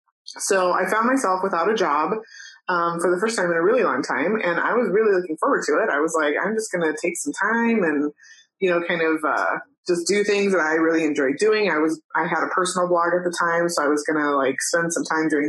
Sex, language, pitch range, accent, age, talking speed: female, English, 155-195 Hz, American, 20-39, 265 wpm